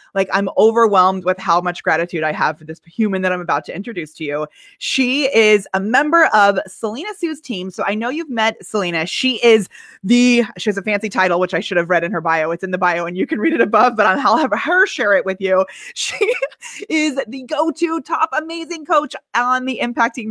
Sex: female